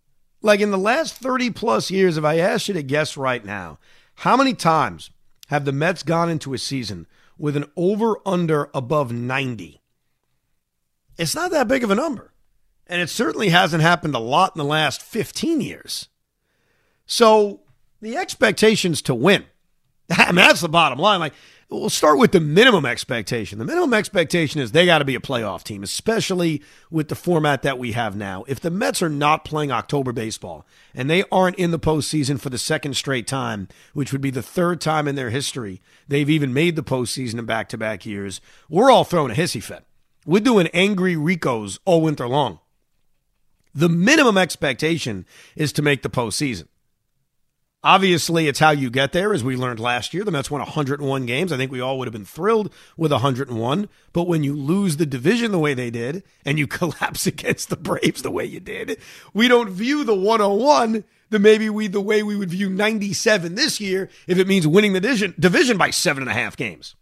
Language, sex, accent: English, male, American